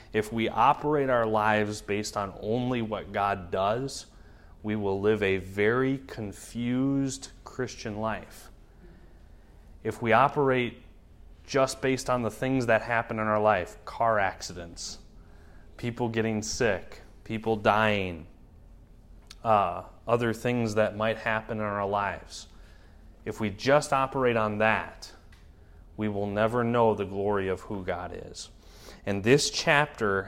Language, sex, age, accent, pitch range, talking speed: English, male, 30-49, American, 95-115 Hz, 135 wpm